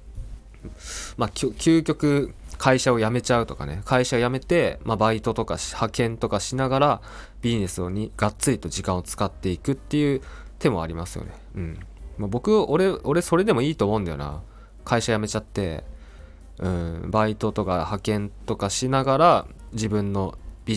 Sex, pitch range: male, 90-125 Hz